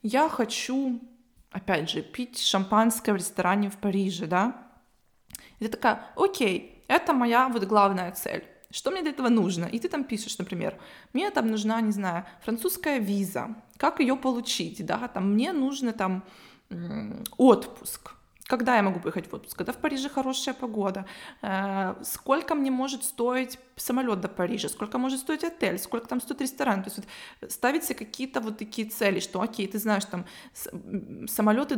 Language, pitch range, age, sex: Russian, 205-265 Hz, 20-39, female